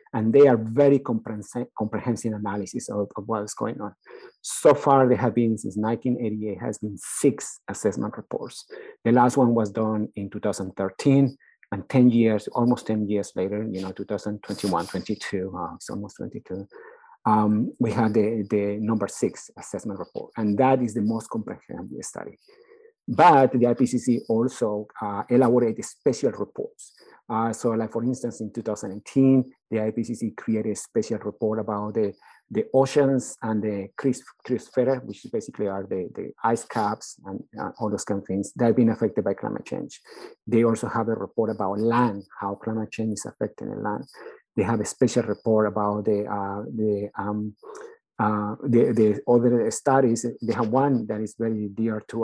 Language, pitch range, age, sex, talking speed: English, 105-125 Hz, 50-69, male, 170 wpm